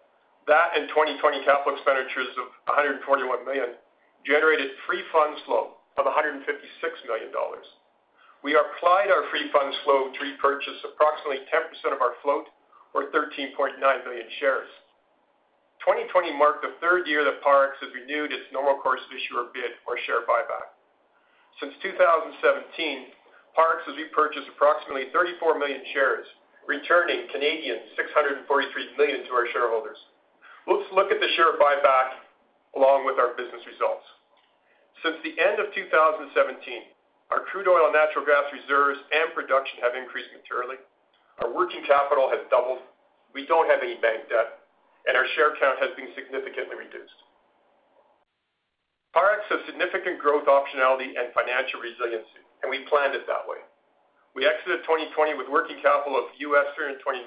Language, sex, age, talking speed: English, male, 50-69, 145 wpm